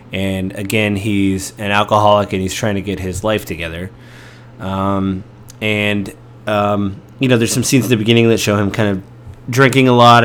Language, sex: English, male